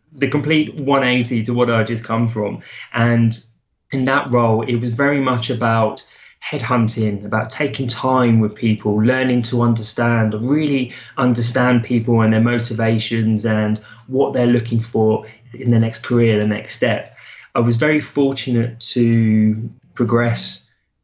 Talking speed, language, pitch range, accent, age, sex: 145 wpm, English, 110-125 Hz, British, 20-39, male